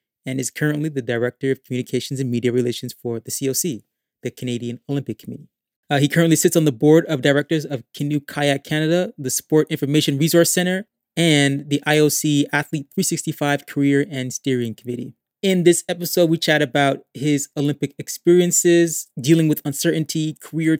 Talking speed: 165 wpm